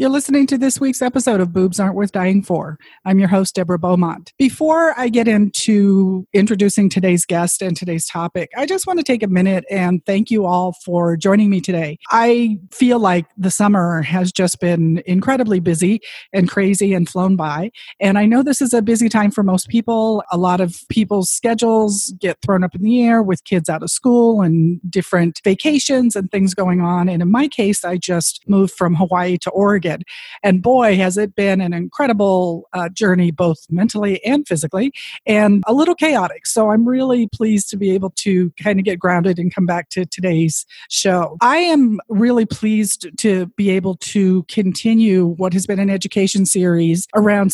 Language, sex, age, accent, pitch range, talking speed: English, female, 40-59, American, 180-220 Hz, 195 wpm